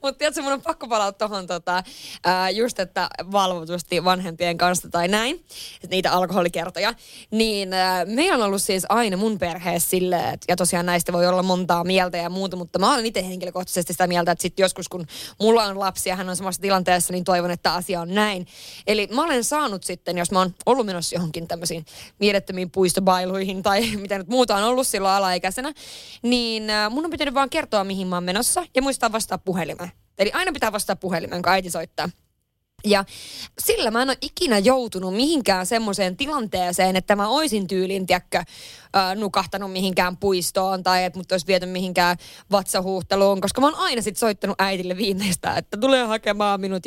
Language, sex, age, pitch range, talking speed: Finnish, female, 20-39, 180-230 Hz, 185 wpm